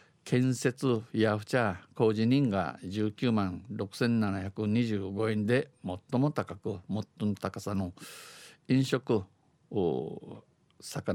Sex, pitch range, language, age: male, 100-120 Hz, Japanese, 50-69